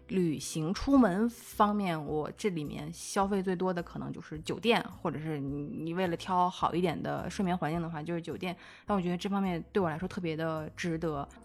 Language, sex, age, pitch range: Chinese, female, 20-39, 155-200 Hz